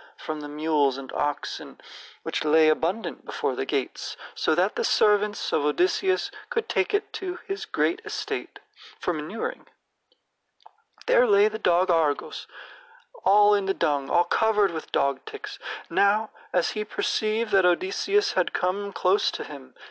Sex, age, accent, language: male, 40-59, American, English